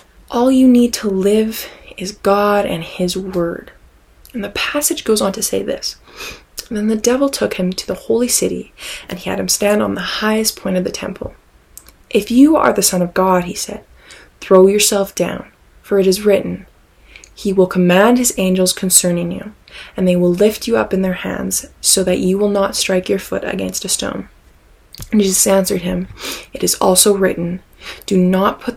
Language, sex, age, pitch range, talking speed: English, female, 20-39, 185-220 Hz, 195 wpm